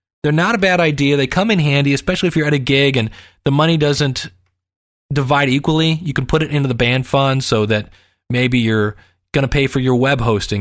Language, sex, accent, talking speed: English, male, American, 225 wpm